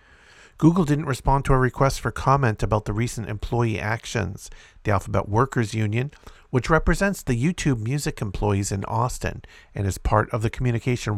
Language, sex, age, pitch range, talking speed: English, male, 50-69, 105-135 Hz, 165 wpm